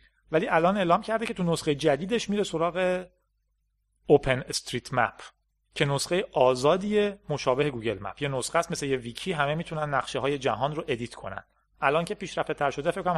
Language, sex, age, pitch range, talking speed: Persian, male, 40-59, 125-170 Hz, 180 wpm